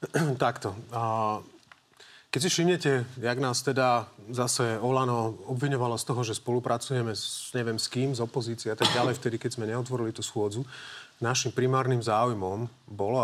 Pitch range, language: 110-135 Hz, Slovak